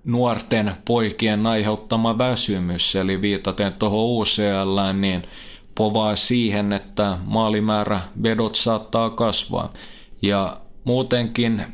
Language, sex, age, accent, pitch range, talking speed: Finnish, male, 20-39, native, 100-115 Hz, 90 wpm